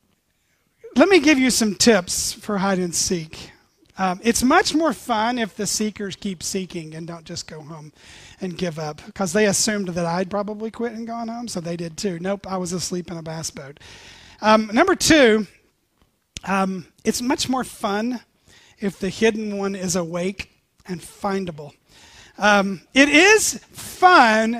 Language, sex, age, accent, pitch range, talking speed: English, male, 30-49, American, 180-235 Hz, 170 wpm